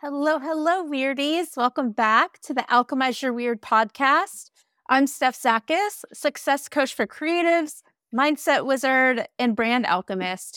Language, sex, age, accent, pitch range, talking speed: English, female, 30-49, American, 195-280 Hz, 130 wpm